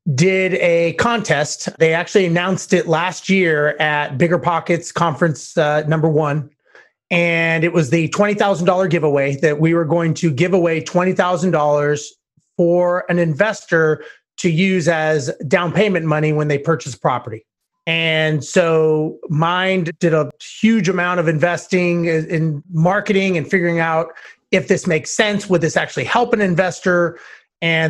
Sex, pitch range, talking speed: male, 160-190 Hz, 145 wpm